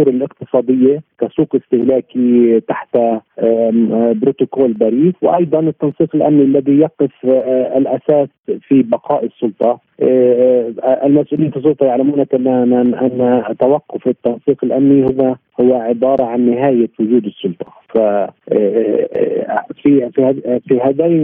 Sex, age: male, 40-59